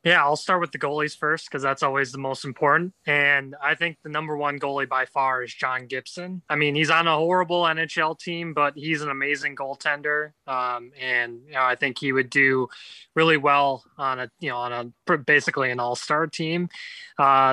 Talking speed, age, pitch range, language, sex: 200 wpm, 20-39, 135-160 Hz, English, male